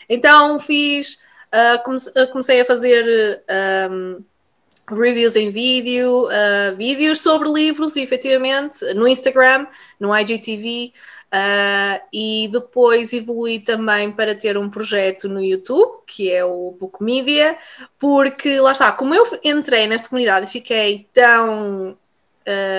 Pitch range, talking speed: 205-285 Hz, 125 wpm